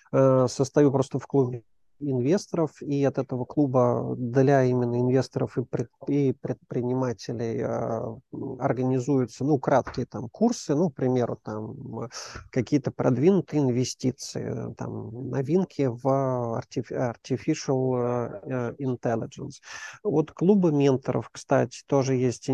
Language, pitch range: Russian, 125-145 Hz